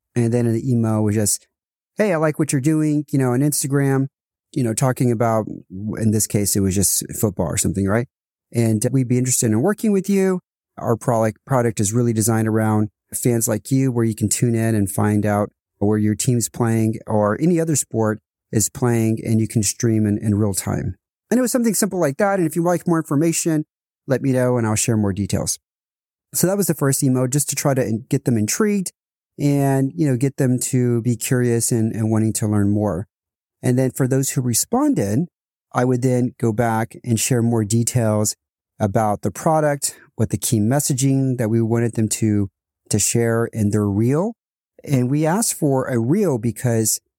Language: English